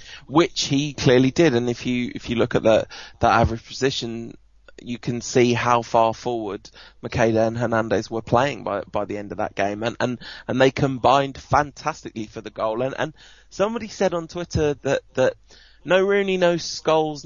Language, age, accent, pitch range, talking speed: English, 20-39, British, 115-140 Hz, 190 wpm